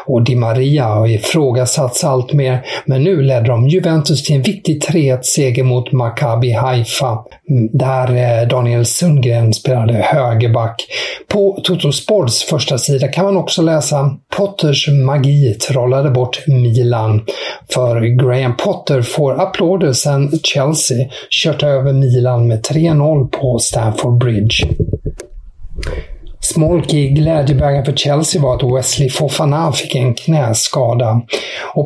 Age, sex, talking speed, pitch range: 50-69, male, 120 wpm, 120-150 Hz